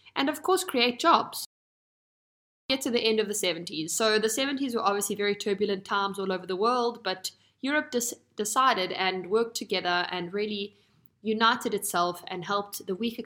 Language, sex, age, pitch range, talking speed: Italian, female, 20-39, 185-245 Hz, 170 wpm